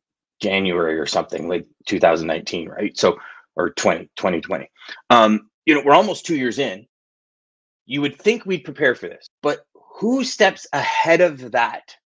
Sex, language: male, English